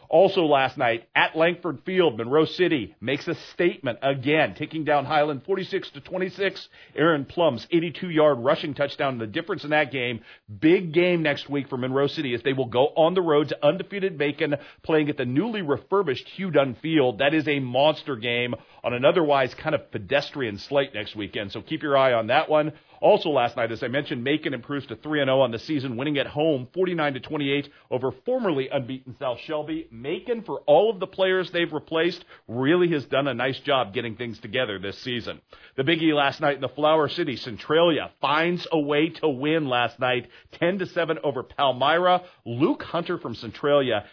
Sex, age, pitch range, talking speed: male, 40-59, 130-170 Hz, 200 wpm